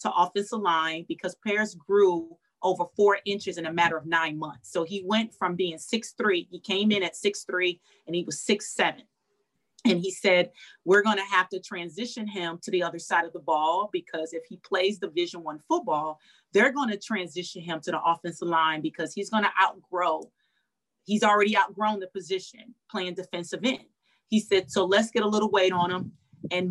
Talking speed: 205 wpm